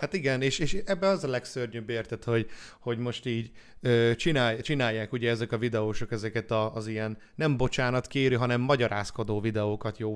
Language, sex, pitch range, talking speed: Hungarian, male, 115-145 Hz, 170 wpm